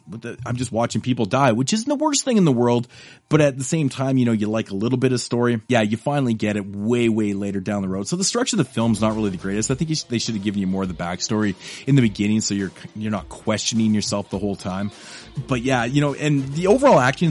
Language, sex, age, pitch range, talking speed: English, male, 30-49, 105-135 Hz, 275 wpm